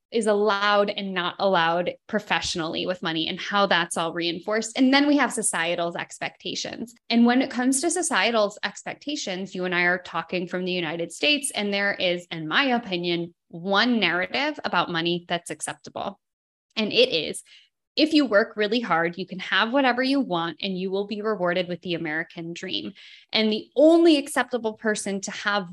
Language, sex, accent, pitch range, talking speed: English, female, American, 180-245 Hz, 180 wpm